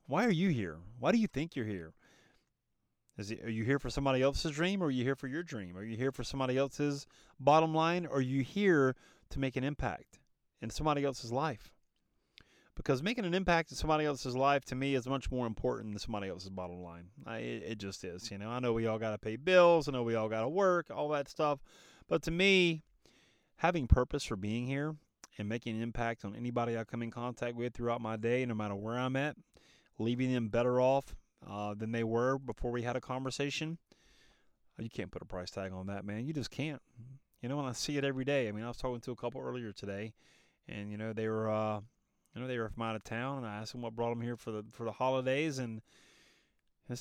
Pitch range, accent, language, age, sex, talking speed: 110-140 Hz, American, English, 30-49, male, 240 wpm